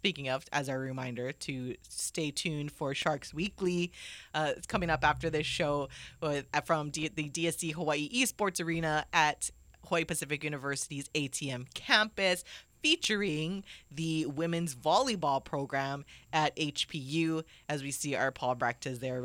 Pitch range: 135-165 Hz